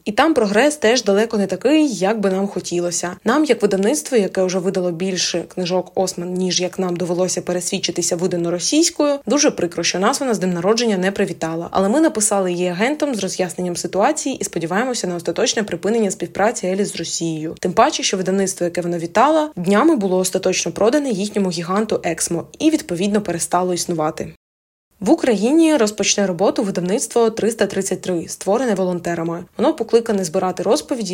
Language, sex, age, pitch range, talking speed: Ukrainian, female, 20-39, 175-225 Hz, 160 wpm